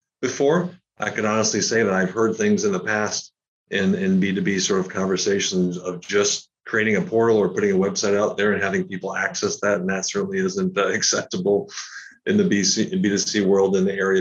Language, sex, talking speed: English, male, 200 wpm